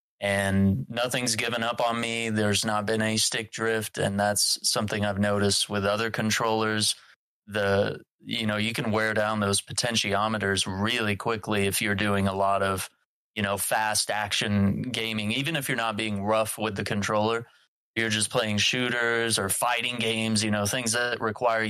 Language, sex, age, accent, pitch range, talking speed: English, male, 20-39, American, 105-120 Hz, 175 wpm